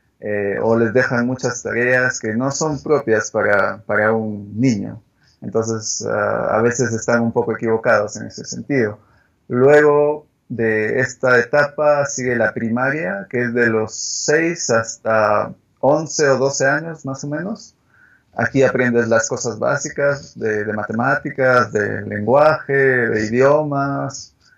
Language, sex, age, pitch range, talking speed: English, male, 30-49, 115-135 Hz, 140 wpm